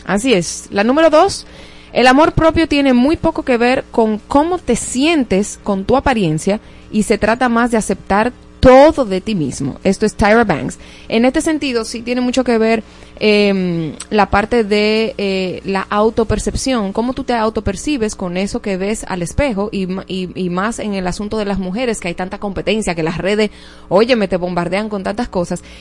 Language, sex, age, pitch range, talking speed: Spanish, female, 20-39, 195-250 Hz, 195 wpm